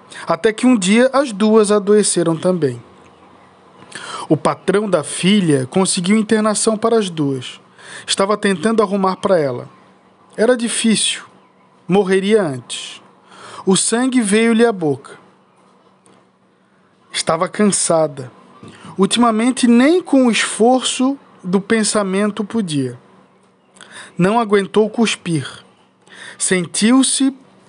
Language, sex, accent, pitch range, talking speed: Portuguese, male, Brazilian, 165-220 Hz, 100 wpm